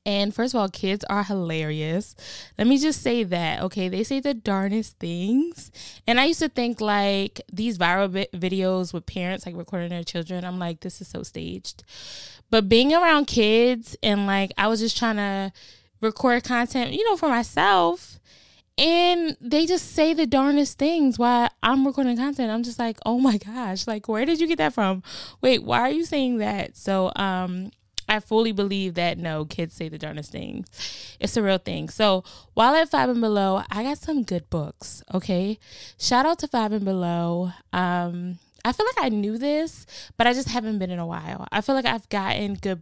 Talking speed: 200 wpm